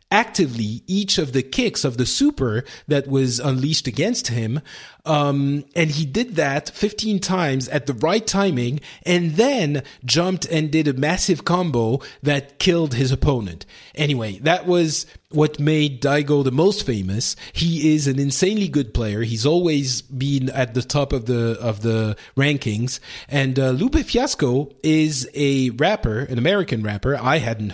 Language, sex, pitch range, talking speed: English, male, 130-160 Hz, 160 wpm